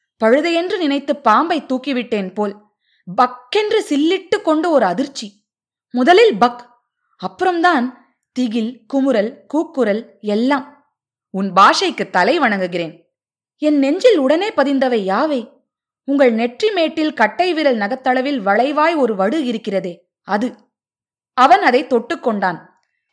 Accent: native